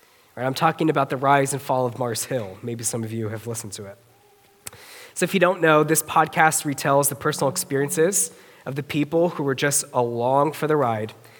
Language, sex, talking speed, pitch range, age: English, male, 205 wpm, 125-155 Hz, 20-39